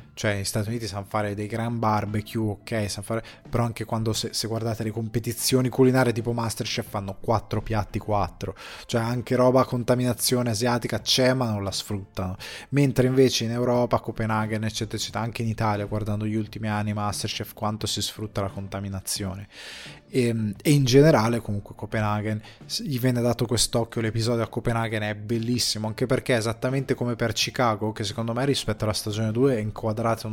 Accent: native